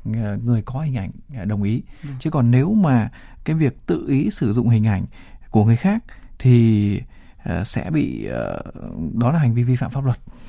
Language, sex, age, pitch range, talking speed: Vietnamese, male, 20-39, 115-145 Hz, 185 wpm